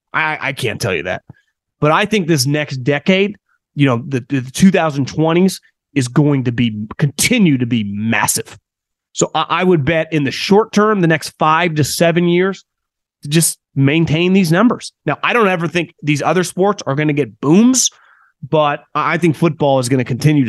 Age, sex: 30-49, male